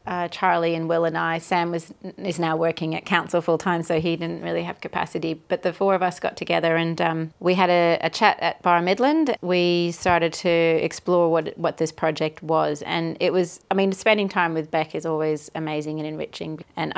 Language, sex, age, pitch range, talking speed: English, female, 30-49, 155-175 Hz, 215 wpm